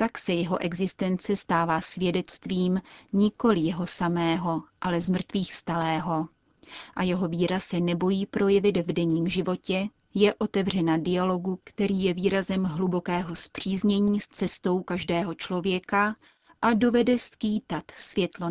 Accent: native